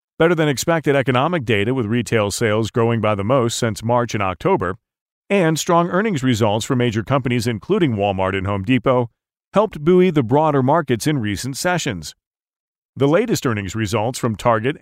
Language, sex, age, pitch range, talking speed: English, male, 40-59, 110-160 Hz, 160 wpm